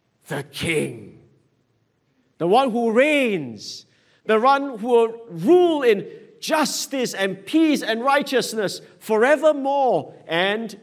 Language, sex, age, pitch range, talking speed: English, male, 50-69, 140-220 Hz, 105 wpm